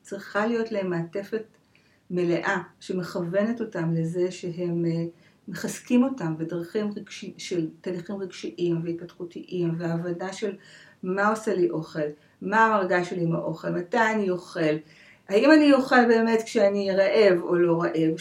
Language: Hebrew